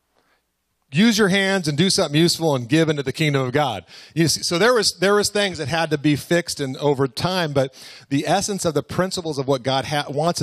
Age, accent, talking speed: 40-59, American, 230 wpm